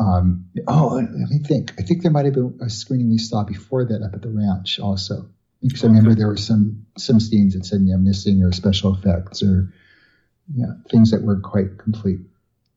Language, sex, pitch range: English, male, 95-115 Hz